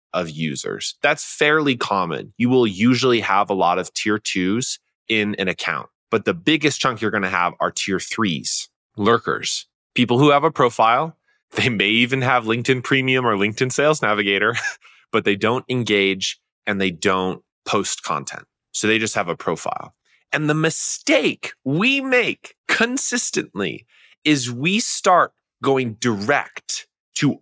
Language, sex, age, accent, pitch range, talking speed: English, male, 20-39, American, 105-140 Hz, 155 wpm